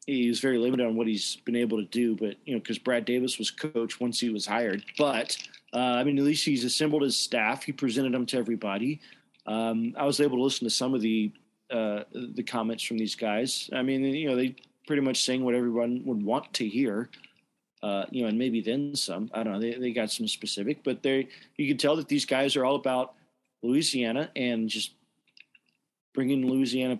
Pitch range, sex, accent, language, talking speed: 120-145 Hz, male, American, English, 220 wpm